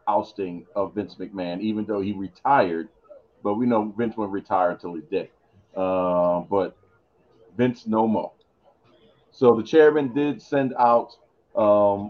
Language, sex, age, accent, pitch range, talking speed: English, male, 40-59, American, 100-120 Hz, 145 wpm